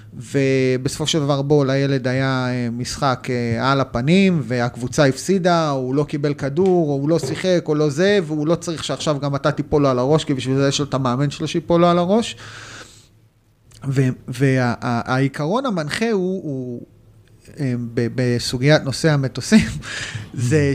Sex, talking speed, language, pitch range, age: male, 140 wpm, Hebrew, 125-165 Hz, 30-49